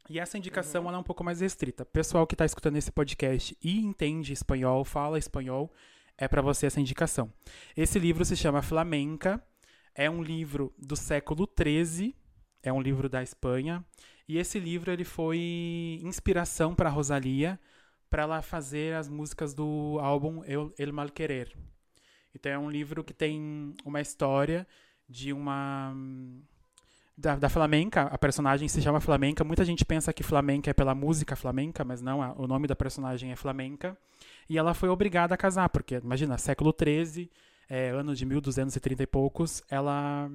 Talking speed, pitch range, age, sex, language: 170 wpm, 135-165 Hz, 20-39, male, Portuguese